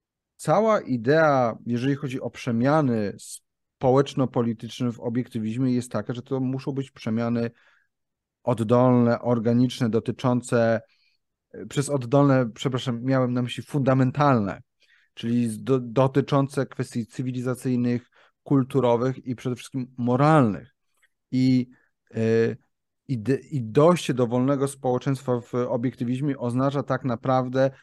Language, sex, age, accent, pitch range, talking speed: Polish, male, 40-59, native, 120-145 Hz, 105 wpm